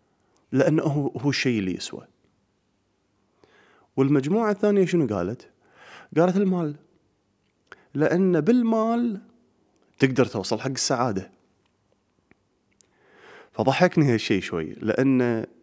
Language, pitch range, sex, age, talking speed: Arabic, 105-155 Hz, male, 30-49, 80 wpm